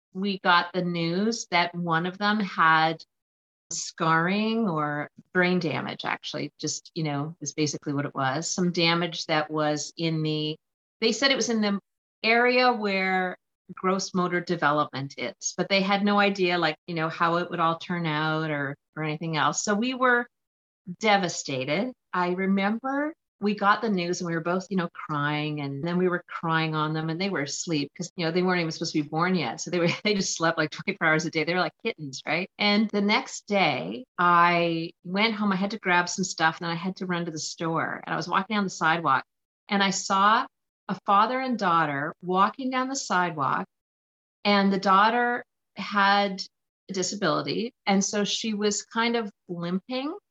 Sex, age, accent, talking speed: female, 40-59, American, 200 wpm